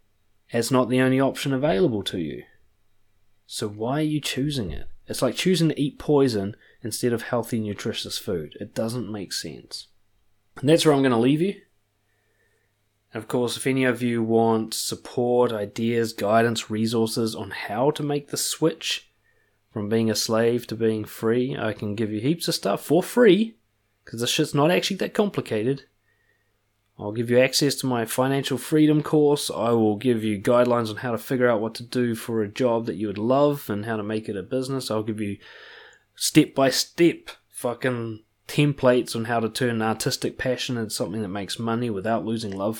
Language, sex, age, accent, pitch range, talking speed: English, male, 20-39, Australian, 105-130 Hz, 190 wpm